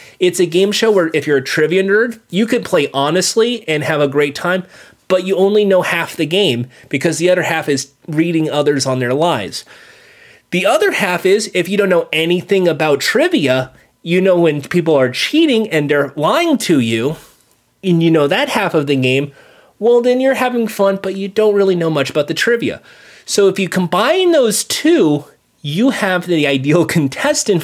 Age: 30-49